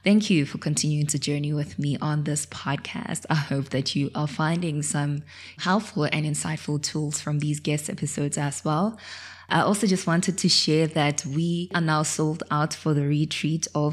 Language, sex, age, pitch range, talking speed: English, female, 20-39, 150-170 Hz, 190 wpm